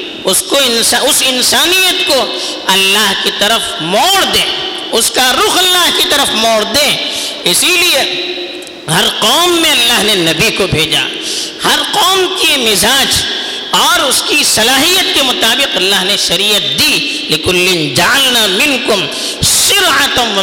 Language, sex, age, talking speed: Urdu, female, 50-69, 140 wpm